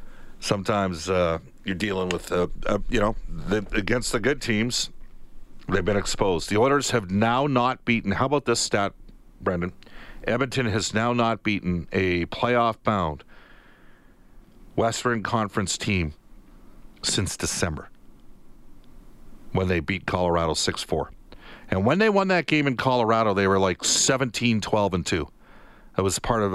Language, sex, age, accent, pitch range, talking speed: English, male, 50-69, American, 85-115 Hz, 135 wpm